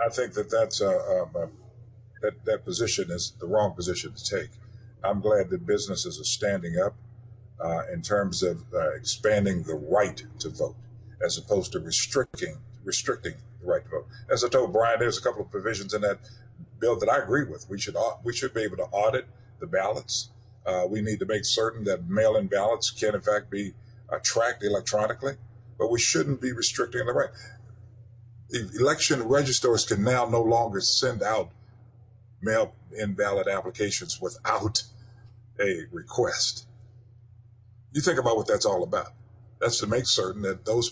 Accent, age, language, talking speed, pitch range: American, 50-69, English, 175 wpm, 110-130 Hz